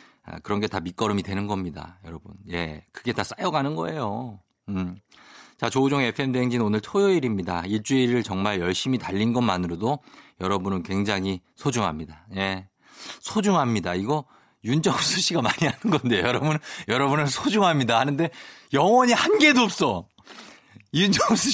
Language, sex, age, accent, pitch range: Korean, male, 40-59, native, 100-170 Hz